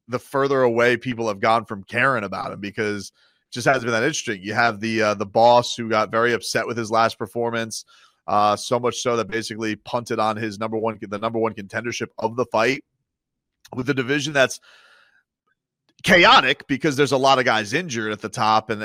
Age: 30-49